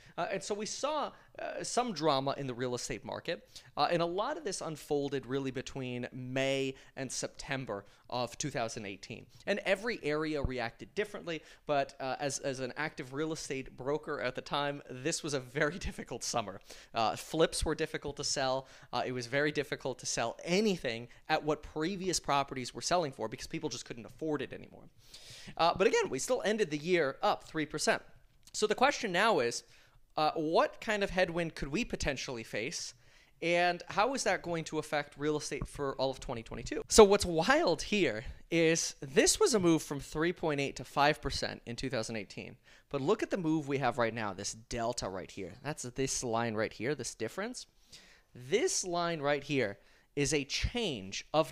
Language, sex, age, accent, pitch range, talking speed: English, male, 30-49, American, 125-170 Hz, 185 wpm